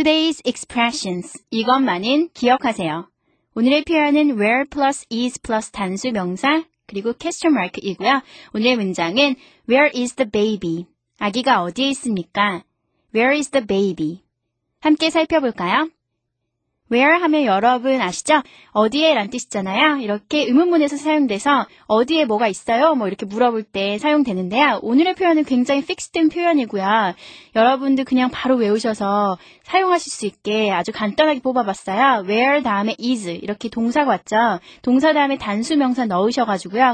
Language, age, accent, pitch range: Korean, 30-49, native, 210-285 Hz